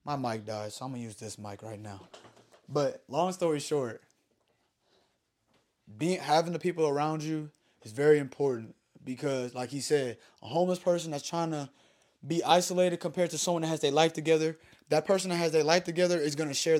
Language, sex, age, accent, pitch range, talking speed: English, male, 20-39, American, 130-165 Hz, 195 wpm